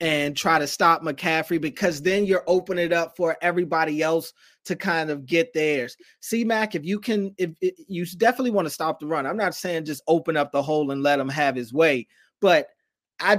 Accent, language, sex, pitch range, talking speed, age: American, English, male, 150-180 Hz, 220 wpm, 30-49